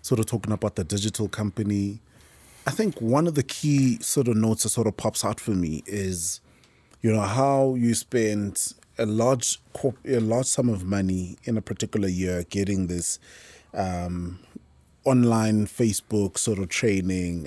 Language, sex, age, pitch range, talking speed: English, male, 20-39, 95-125 Hz, 170 wpm